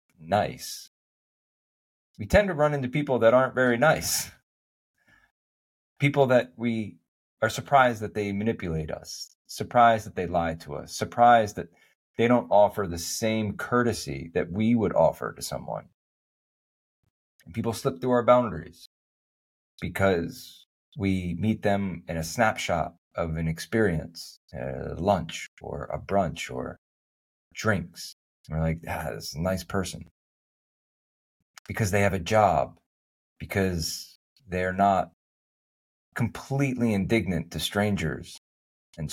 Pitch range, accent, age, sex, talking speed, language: 80-110 Hz, American, 30-49, male, 125 wpm, English